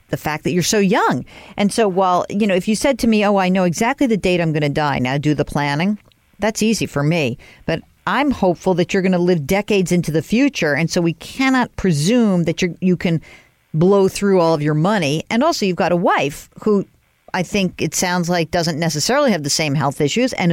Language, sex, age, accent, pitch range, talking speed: English, female, 50-69, American, 165-225 Hz, 235 wpm